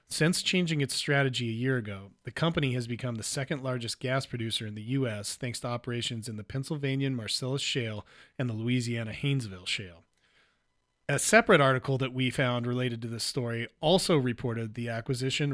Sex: male